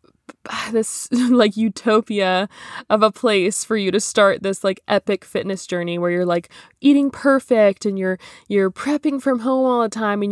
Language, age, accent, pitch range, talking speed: English, 10-29, American, 200-245 Hz, 175 wpm